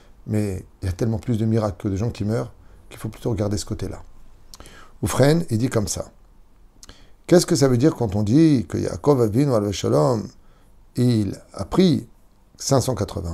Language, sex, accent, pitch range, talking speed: French, male, French, 95-125 Hz, 190 wpm